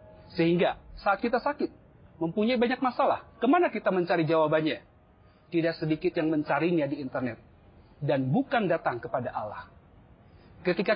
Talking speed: 125 wpm